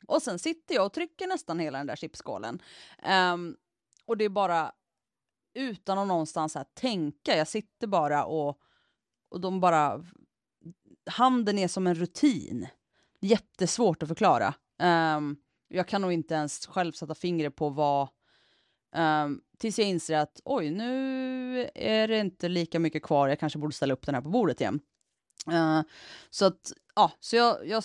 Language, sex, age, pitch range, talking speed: Swedish, female, 30-49, 150-195 Hz, 165 wpm